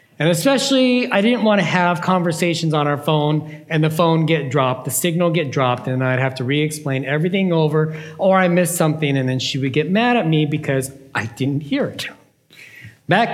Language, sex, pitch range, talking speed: English, male, 150-200 Hz, 200 wpm